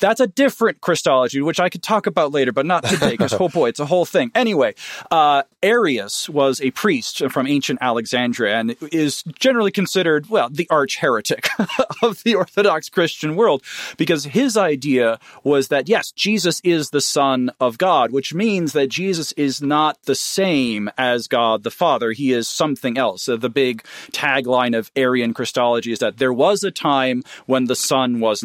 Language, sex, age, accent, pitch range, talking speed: English, male, 40-59, American, 120-155 Hz, 180 wpm